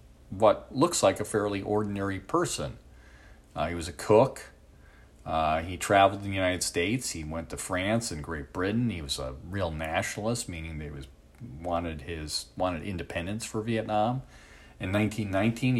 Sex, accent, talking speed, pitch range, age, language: male, American, 150 wpm, 75-110 Hz, 40-59, English